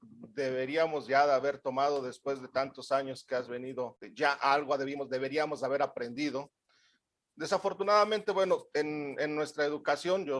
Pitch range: 130-170 Hz